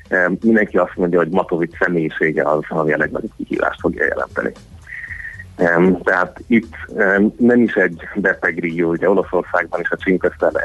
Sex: male